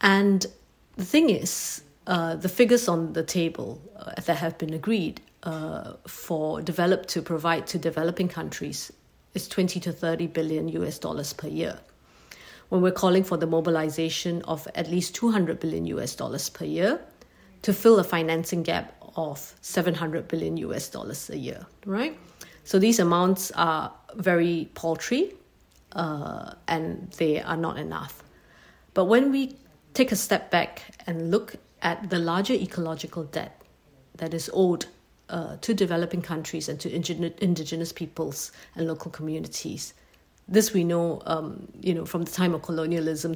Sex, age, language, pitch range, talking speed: female, 50-69, English, 165-190 Hz, 155 wpm